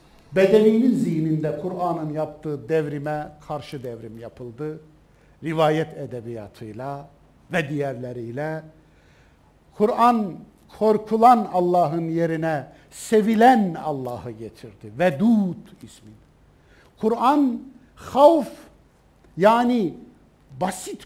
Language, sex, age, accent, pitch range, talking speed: Turkish, male, 60-79, native, 140-205 Hz, 70 wpm